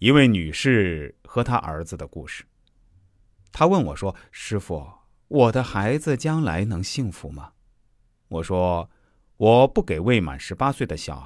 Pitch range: 95-135 Hz